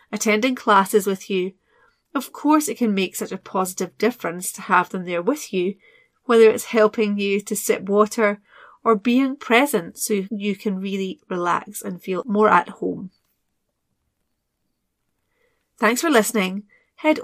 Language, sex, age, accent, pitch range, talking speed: English, female, 30-49, British, 195-265 Hz, 150 wpm